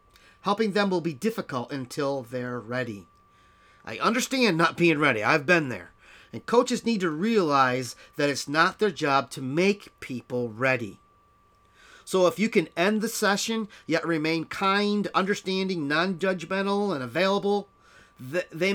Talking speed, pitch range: 145 wpm, 130-205 Hz